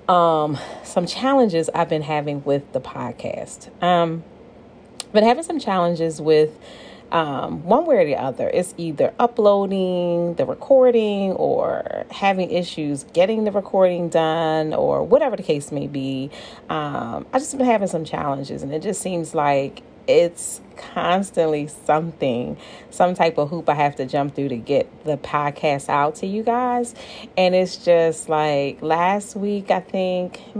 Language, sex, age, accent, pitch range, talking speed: English, female, 30-49, American, 150-190 Hz, 155 wpm